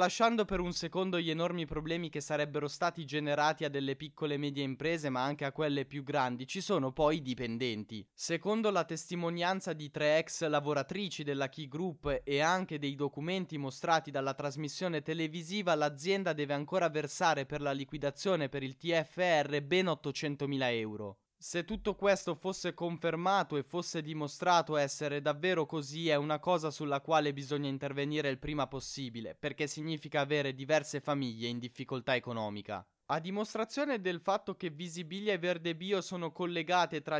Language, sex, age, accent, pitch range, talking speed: Italian, male, 20-39, native, 140-180 Hz, 160 wpm